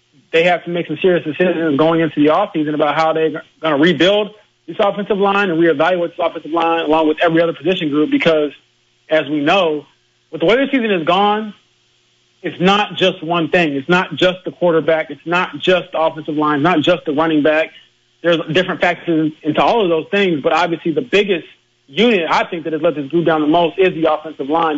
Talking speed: 220 wpm